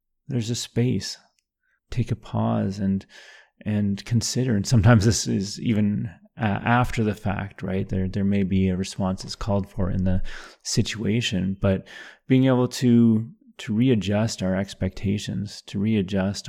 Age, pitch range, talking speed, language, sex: 30-49, 95-115 Hz, 150 wpm, English, male